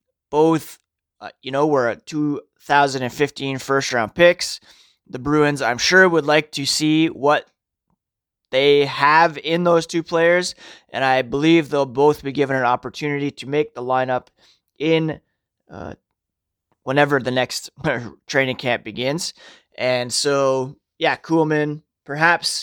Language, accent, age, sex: English, American, 20-39, male